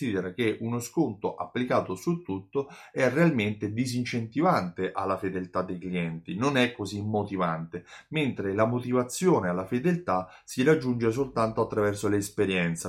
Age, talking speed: 30-49, 125 wpm